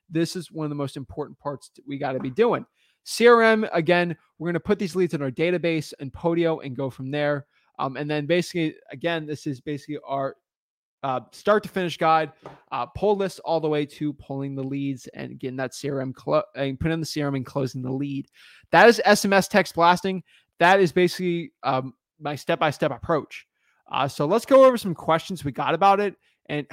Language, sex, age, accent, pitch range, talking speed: English, male, 20-39, American, 140-175 Hz, 210 wpm